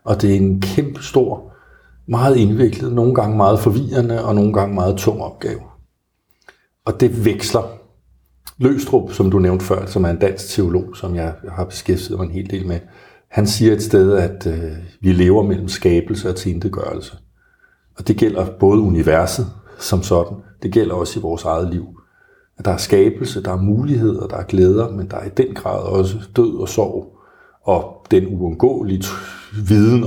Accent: native